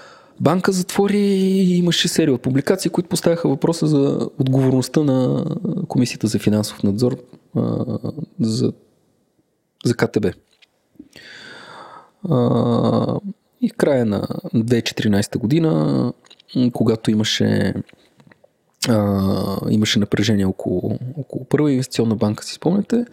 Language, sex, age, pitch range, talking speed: Bulgarian, male, 20-39, 105-150 Hz, 100 wpm